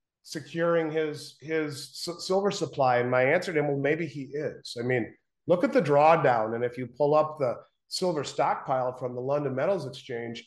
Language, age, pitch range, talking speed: English, 40-59, 125-165 Hz, 195 wpm